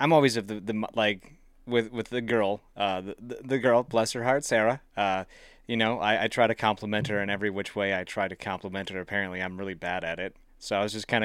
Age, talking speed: 30-49, 250 wpm